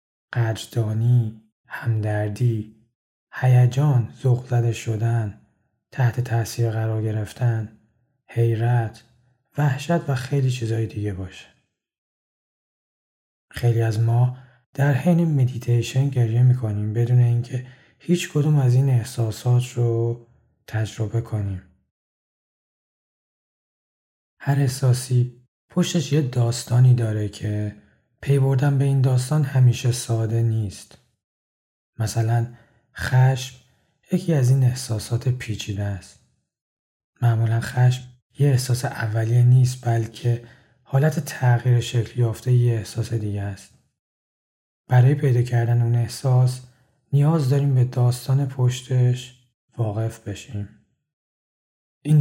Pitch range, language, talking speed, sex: 115-130 Hz, Persian, 100 wpm, male